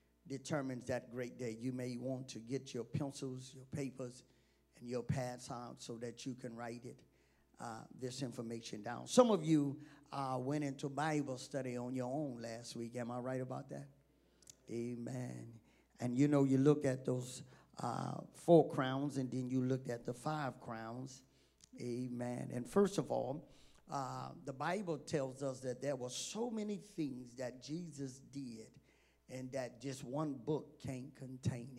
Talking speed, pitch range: 170 wpm, 125-150 Hz